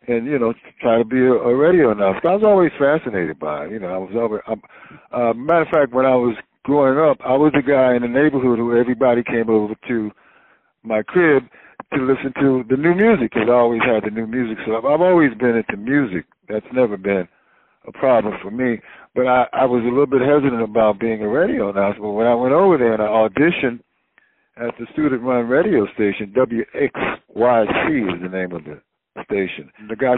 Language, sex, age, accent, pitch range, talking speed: English, male, 60-79, American, 110-130 Hz, 215 wpm